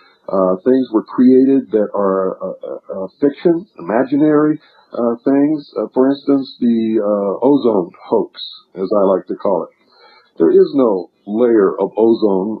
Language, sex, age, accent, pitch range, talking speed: Dutch, male, 50-69, American, 105-130 Hz, 150 wpm